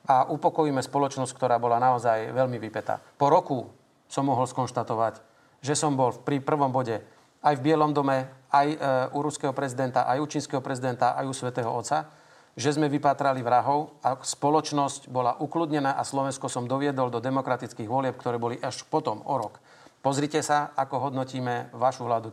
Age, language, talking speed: 40-59, Slovak, 165 wpm